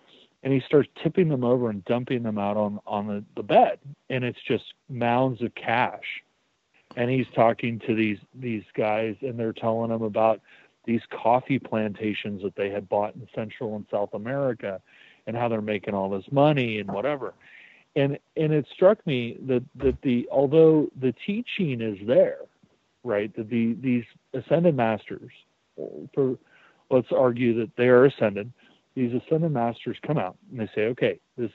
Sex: male